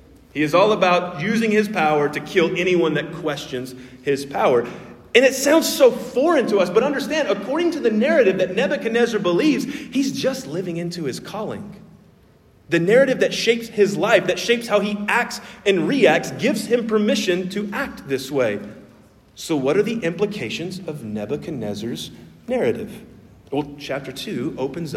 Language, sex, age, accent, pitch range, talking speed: English, male, 40-59, American, 150-235 Hz, 165 wpm